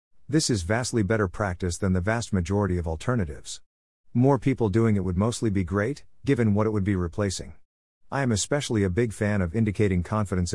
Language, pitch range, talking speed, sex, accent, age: English, 90-115 Hz, 195 wpm, male, American, 50-69